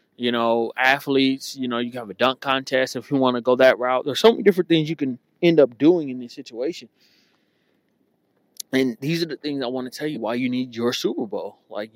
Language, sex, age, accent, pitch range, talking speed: English, male, 20-39, American, 125-145 Hz, 240 wpm